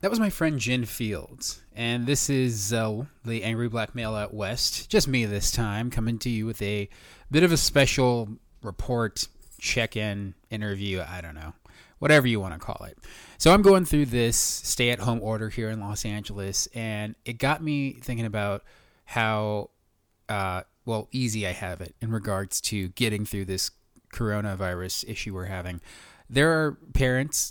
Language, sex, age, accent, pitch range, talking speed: English, male, 20-39, American, 100-125 Hz, 170 wpm